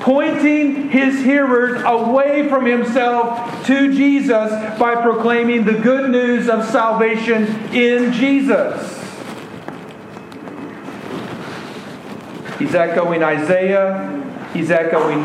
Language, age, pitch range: English, 50-69, 145-215 Hz